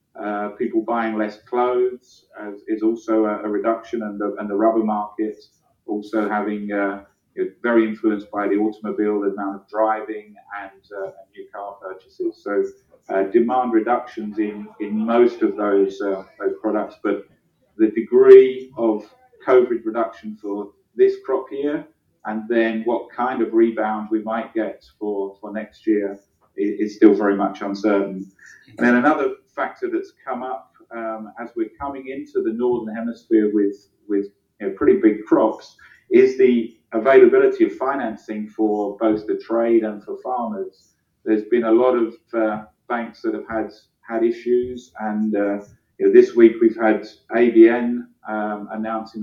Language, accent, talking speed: English, British, 150 wpm